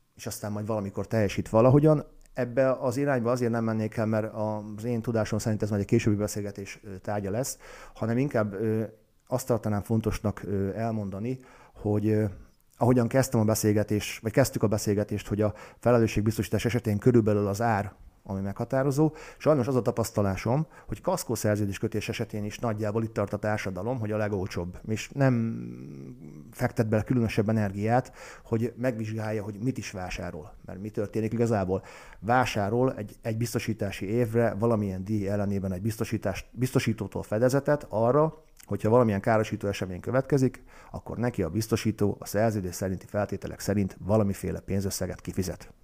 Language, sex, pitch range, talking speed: Hungarian, male, 105-120 Hz, 145 wpm